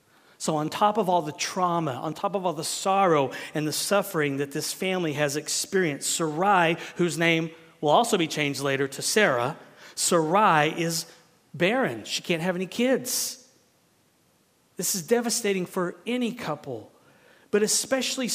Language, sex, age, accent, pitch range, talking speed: English, male, 40-59, American, 160-205 Hz, 155 wpm